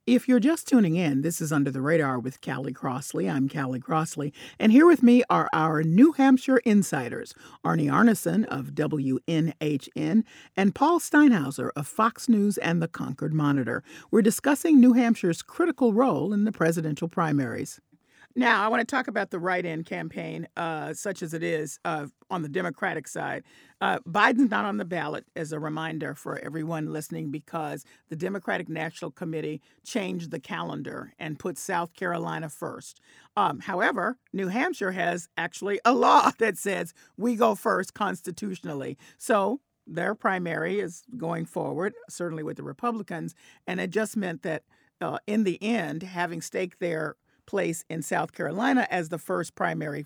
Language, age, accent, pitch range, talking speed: English, 50-69, American, 160-225 Hz, 165 wpm